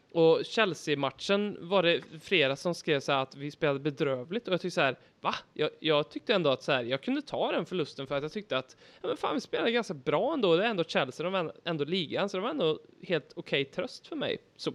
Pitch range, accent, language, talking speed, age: 145-195 Hz, native, Swedish, 265 wpm, 20-39